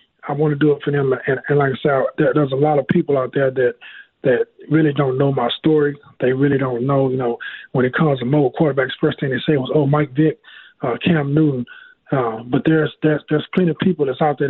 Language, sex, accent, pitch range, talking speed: English, male, American, 140-170 Hz, 255 wpm